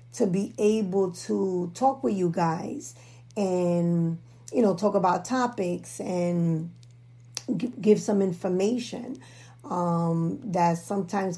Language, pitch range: English, 165-205 Hz